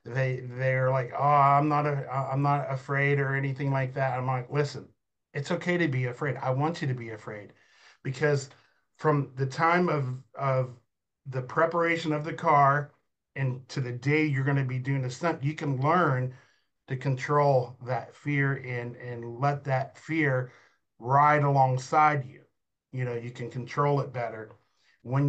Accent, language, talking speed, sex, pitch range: American, English, 175 wpm, male, 130-155 Hz